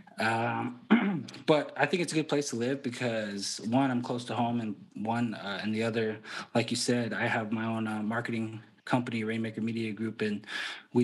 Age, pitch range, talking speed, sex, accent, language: 20-39, 105-120 Hz, 200 wpm, male, American, English